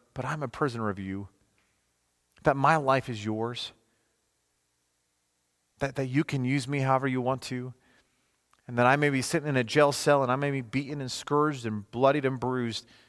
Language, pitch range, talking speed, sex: English, 100-145 Hz, 195 wpm, male